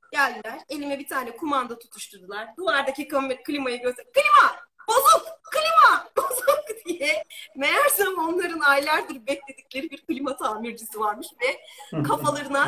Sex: female